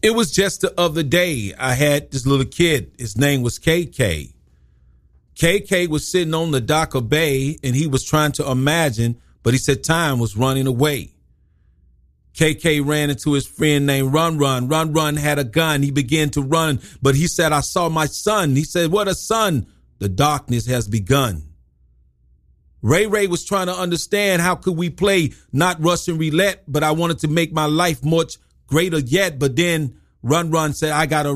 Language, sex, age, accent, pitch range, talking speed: English, male, 40-59, American, 130-180 Hz, 190 wpm